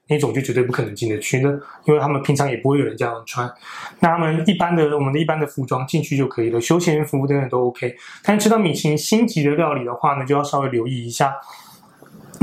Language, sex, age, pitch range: Chinese, male, 20-39, 130-160 Hz